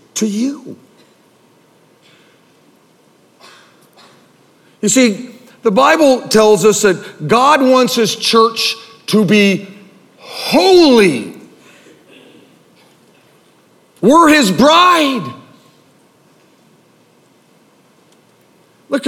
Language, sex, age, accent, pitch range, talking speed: English, male, 50-69, American, 160-225 Hz, 55 wpm